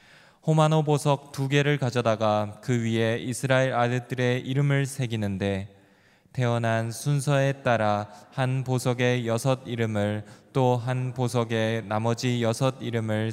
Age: 20-39